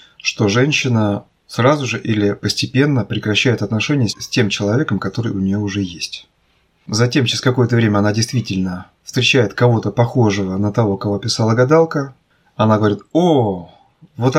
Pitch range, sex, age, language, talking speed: 105-130 Hz, male, 20-39, Russian, 140 wpm